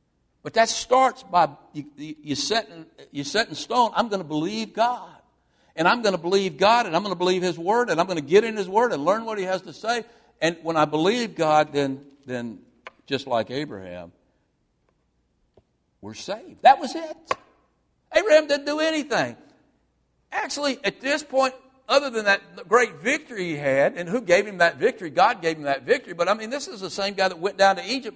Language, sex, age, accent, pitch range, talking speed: English, male, 60-79, American, 170-260 Hz, 215 wpm